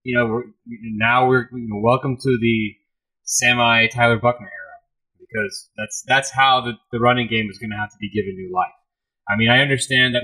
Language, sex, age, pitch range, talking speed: English, male, 30-49, 115-145 Hz, 205 wpm